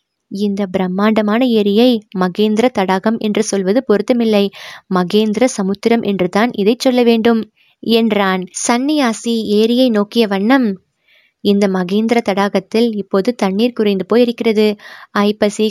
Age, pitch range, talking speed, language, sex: 20-39, 200-240 Hz, 105 wpm, Tamil, female